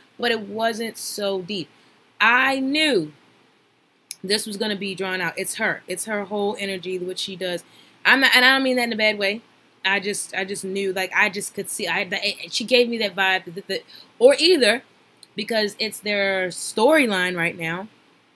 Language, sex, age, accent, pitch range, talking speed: English, female, 20-39, American, 190-275 Hz, 195 wpm